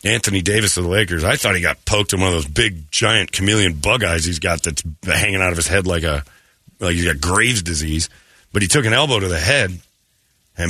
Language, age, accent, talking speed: English, 40-59, American, 240 wpm